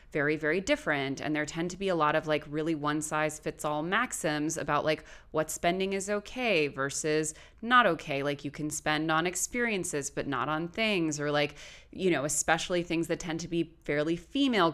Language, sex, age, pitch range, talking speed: English, female, 20-39, 150-185 Hz, 200 wpm